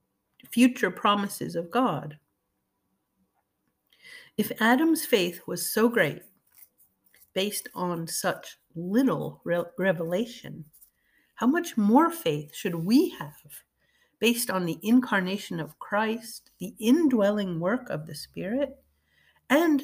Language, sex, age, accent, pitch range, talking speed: English, female, 50-69, American, 170-255 Hz, 105 wpm